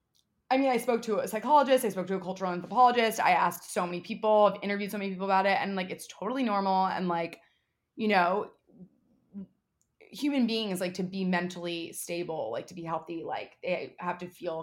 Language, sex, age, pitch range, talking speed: English, female, 20-39, 180-220 Hz, 205 wpm